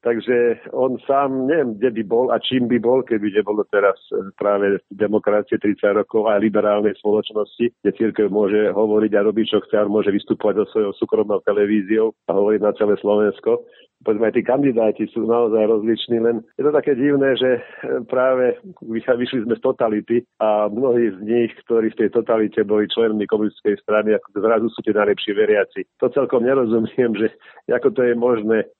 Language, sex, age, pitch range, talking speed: Slovak, male, 50-69, 105-125 Hz, 175 wpm